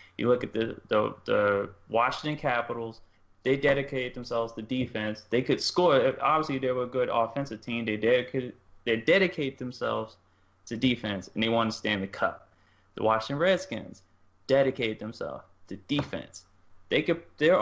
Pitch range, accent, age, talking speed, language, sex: 115-145 Hz, American, 20-39, 160 wpm, English, male